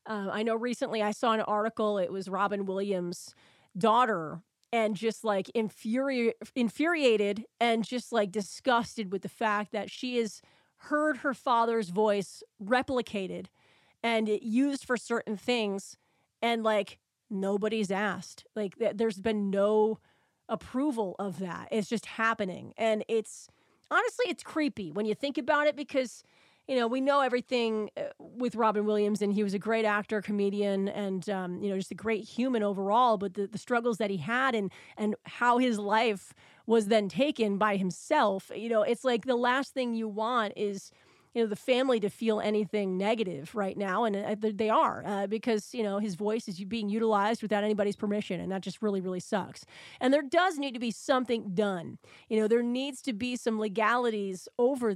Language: English